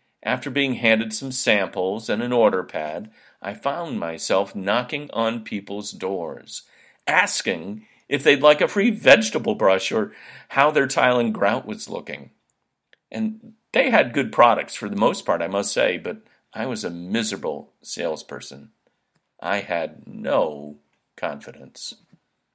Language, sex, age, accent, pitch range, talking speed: English, male, 50-69, American, 95-130 Hz, 145 wpm